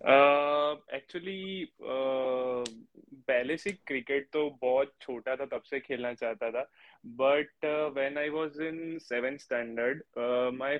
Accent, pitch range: Indian, 125-145 Hz